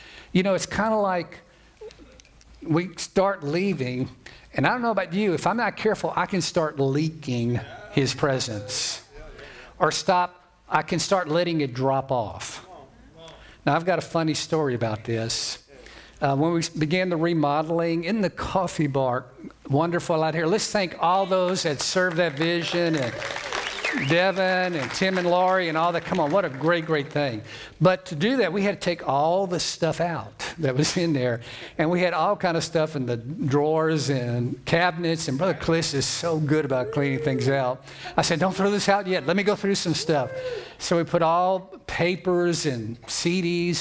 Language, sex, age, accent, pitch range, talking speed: English, male, 50-69, American, 140-180 Hz, 190 wpm